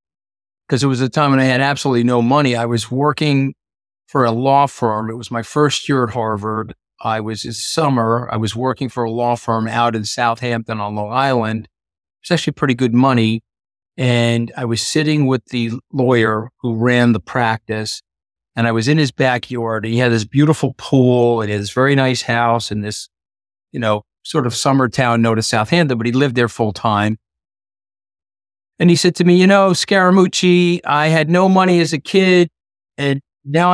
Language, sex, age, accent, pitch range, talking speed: English, male, 50-69, American, 115-155 Hz, 200 wpm